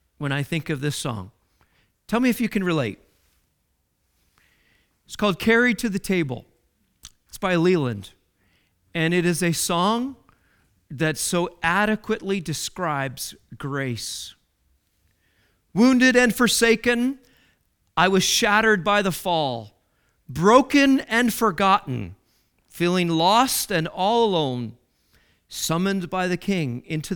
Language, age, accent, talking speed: English, 40-59, American, 115 wpm